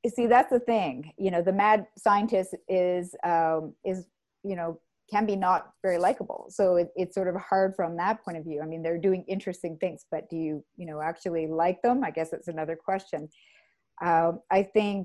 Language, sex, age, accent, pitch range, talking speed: English, female, 30-49, American, 165-195 Hz, 205 wpm